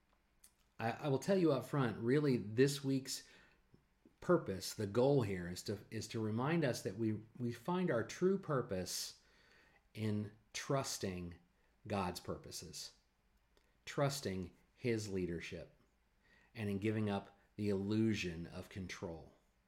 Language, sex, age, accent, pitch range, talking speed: English, male, 40-59, American, 90-115 Hz, 125 wpm